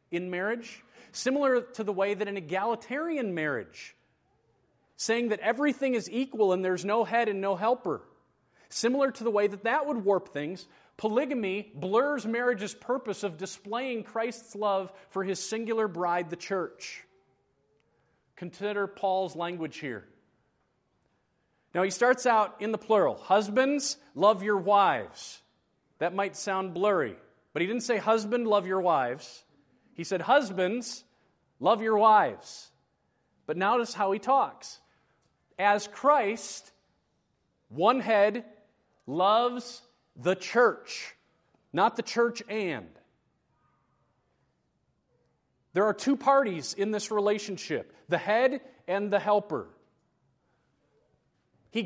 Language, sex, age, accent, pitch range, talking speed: English, male, 40-59, American, 195-240 Hz, 125 wpm